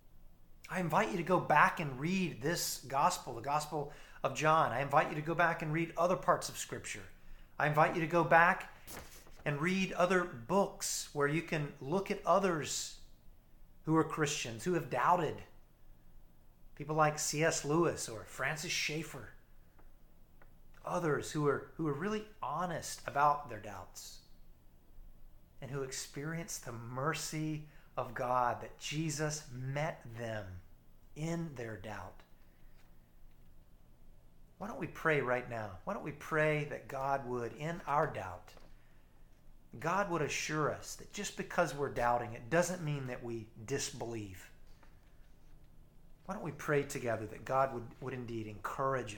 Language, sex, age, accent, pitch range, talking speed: English, male, 30-49, American, 105-160 Hz, 150 wpm